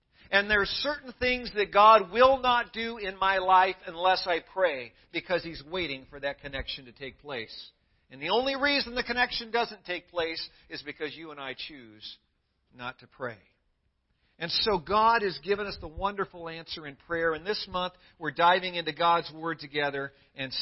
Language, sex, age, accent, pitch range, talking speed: English, male, 50-69, American, 140-190 Hz, 185 wpm